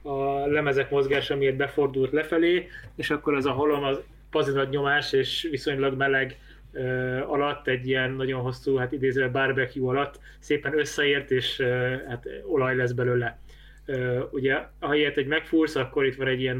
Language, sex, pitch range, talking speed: Hungarian, male, 125-140 Hz, 165 wpm